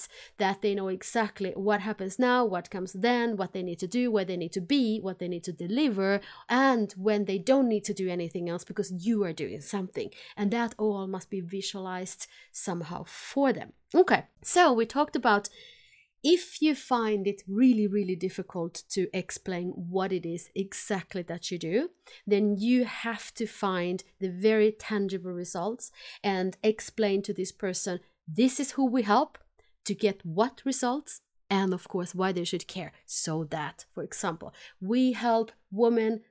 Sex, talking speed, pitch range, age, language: female, 175 wpm, 190-235 Hz, 30-49, English